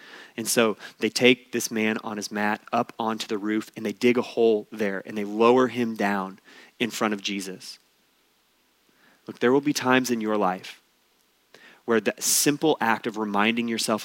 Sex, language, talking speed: male, English, 185 wpm